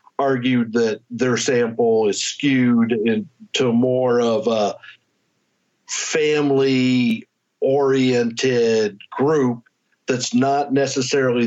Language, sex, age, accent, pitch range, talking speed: English, male, 50-69, American, 120-145 Hz, 80 wpm